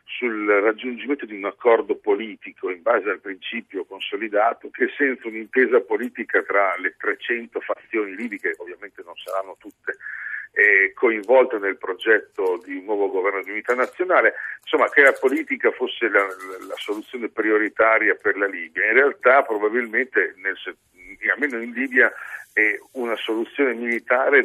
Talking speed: 145 wpm